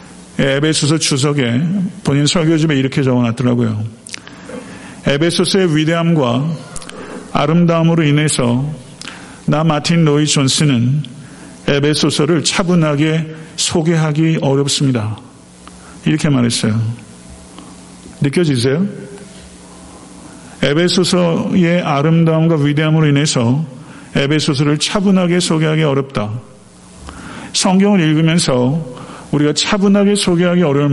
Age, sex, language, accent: 50-69, male, Korean, native